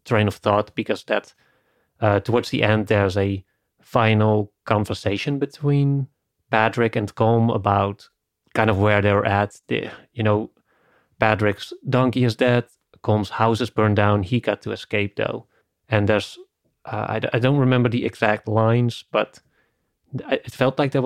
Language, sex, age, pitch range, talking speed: English, male, 30-49, 100-120 Hz, 155 wpm